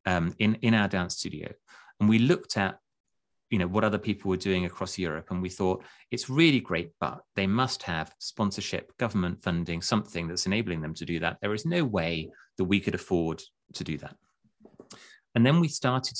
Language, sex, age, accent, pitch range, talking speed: English, male, 30-49, British, 90-110 Hz, 200 wpm